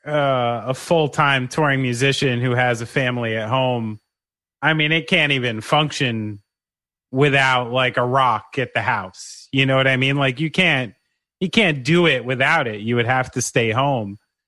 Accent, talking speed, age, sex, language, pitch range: American, 185 wpm, 30-49, male, English, 120-150 Hz